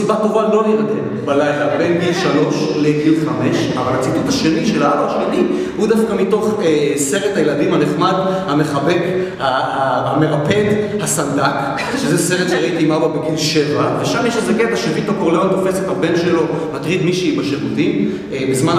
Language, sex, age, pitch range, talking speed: Hebrew, male, 30-49, 145-195 Hz, 140 wpm